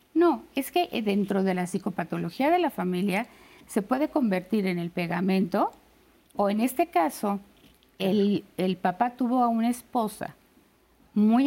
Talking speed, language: 145 wpm, Spanish